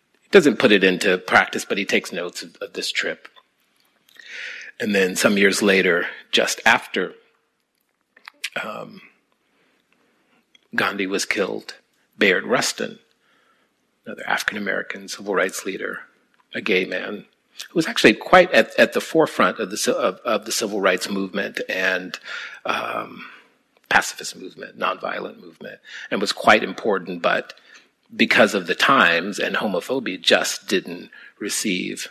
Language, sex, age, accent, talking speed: English, male, 40-59, American, 135 wpm